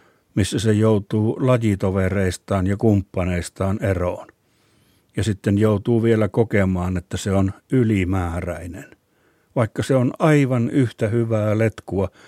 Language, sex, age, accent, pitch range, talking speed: Finnish, male, 60-79, native, 100-120 Hz, 110 wpm